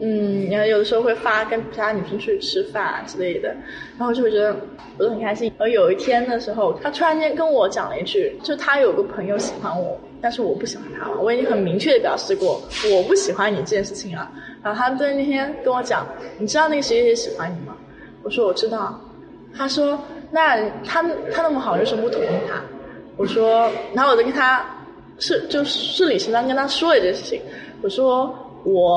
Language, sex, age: Chinese, female, 20-39